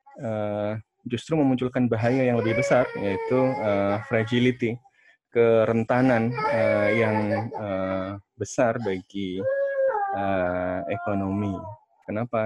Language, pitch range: Indonesian, 95-115 Hz